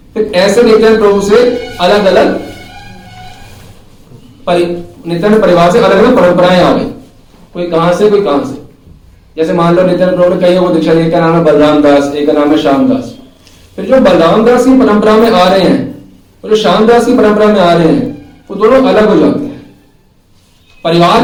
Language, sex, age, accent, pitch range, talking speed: Hindi, male, 50-69, native, 175-245 Hz, 180 wpm